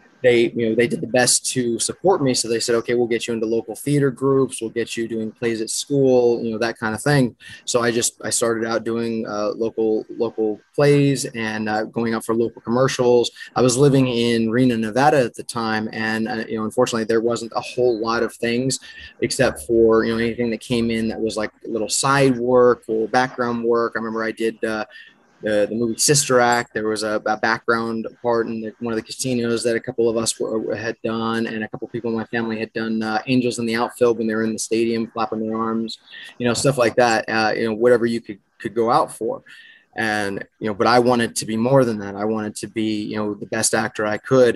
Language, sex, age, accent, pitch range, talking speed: English, male, 20-39, American, 110-120 Hz, 240 wpm